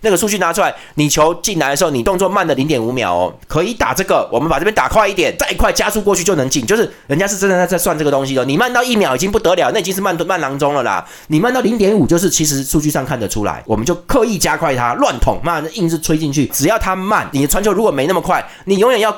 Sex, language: male, Chinese